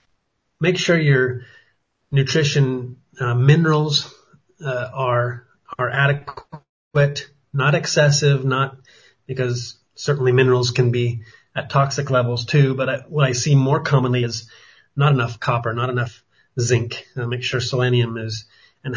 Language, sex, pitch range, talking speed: English, male, 125-150 Hz, 135 wpm